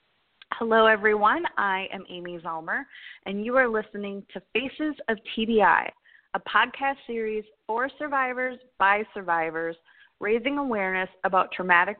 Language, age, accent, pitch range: English, 20-39, American, 185-245 Hz